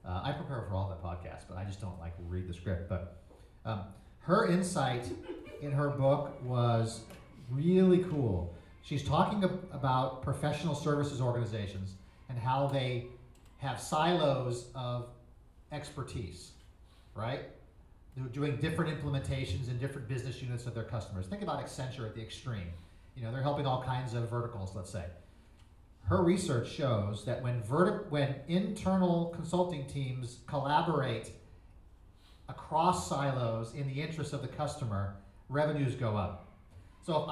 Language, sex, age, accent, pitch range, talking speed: English, male, 40-59, American, 110-145 Hz, 145 wpm